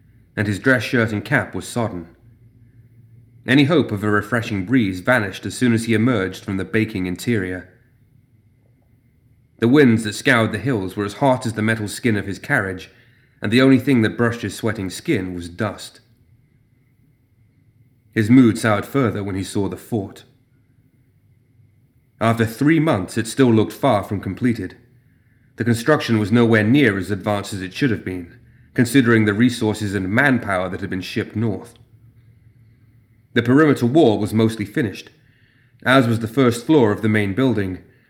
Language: English